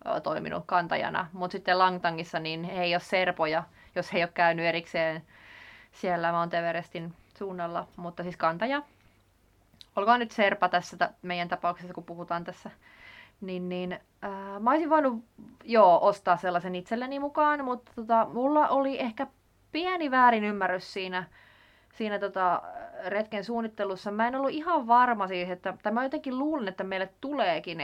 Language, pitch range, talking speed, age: Finnish, 180-240 Hz, 150 wpm, 20-39